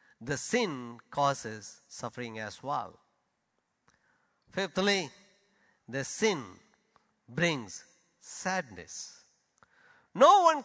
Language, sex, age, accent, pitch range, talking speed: English, male, 50-69, Indian, 140-225 Hz, 75 wpm